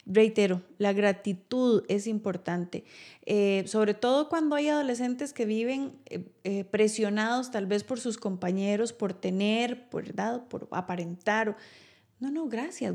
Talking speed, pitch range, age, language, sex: 130 wpm, 190-240 Hz, 30-49, Spanish, female